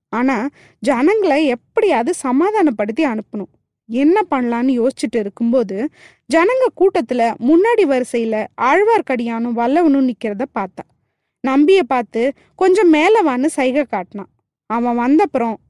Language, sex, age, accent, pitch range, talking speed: Tamil, female, 20-39, native, 245-360 Hz, 85 wpm